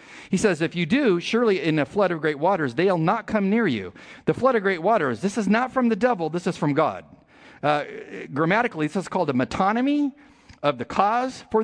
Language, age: English, 40-59